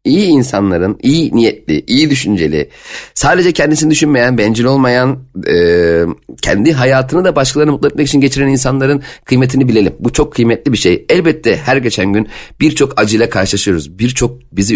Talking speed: 150 wpm